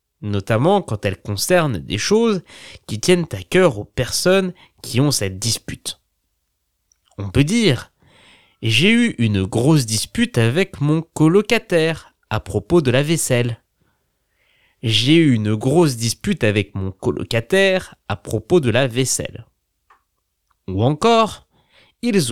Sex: male